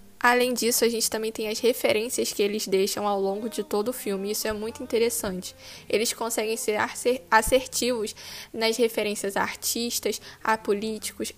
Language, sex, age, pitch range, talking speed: Portuguese, female, 10-29, 215-255 Hz, 165 wpm